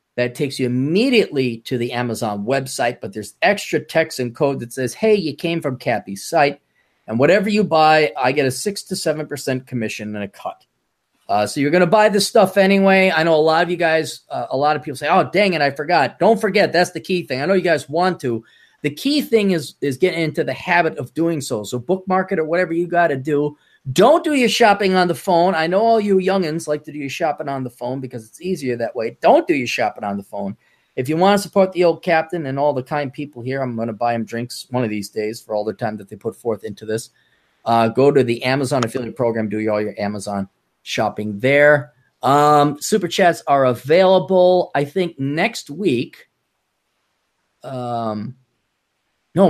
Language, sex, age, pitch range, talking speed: English, male, 30-49, 125-180 Hz, 225 wpm